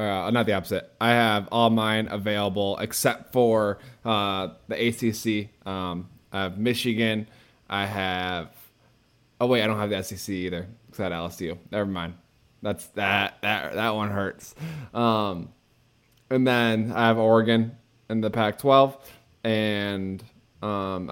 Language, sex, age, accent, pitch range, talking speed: English, male, 20-39, American, 105-120 Hz, 145 wpm